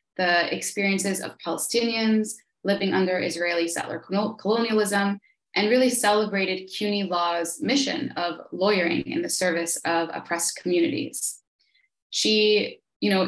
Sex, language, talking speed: female, English, 115 wpm